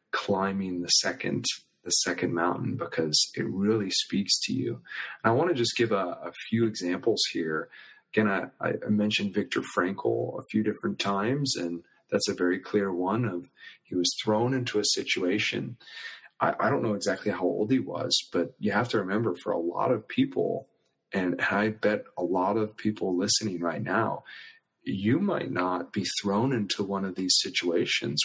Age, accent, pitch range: 30-49, American, 90-105 Hz